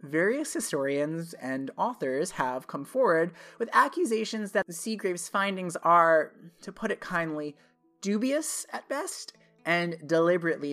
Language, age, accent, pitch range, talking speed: English, 30-49, American, 145-195 Hz, 130 wpm